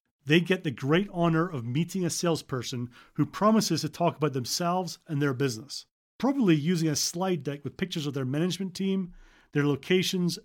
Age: 40-59